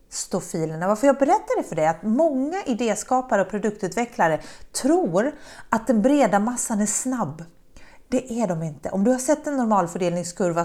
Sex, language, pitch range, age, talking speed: female, Swedish, 190-255 Hz, 40-59, 165 wpm